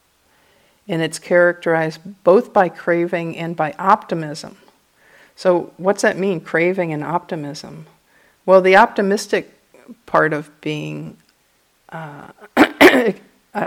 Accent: American